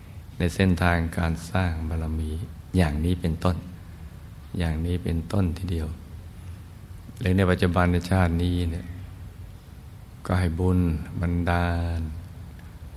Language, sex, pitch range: Thai, male, 85-95 Hz